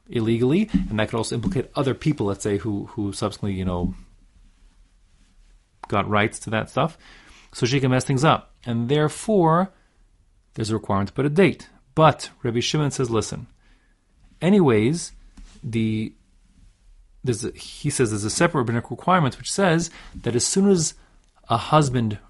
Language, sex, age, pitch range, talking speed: English, male, 30-49, 100-140 Hz, 155 wpm